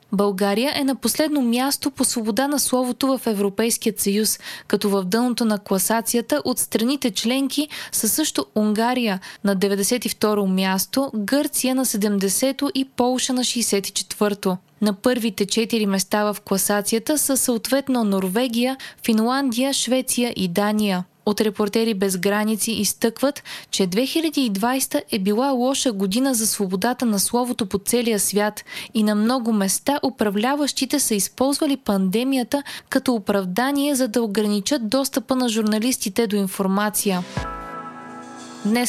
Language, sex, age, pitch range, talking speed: Bulgarian, female, 20-39, 205-260 Hz, 130 wpm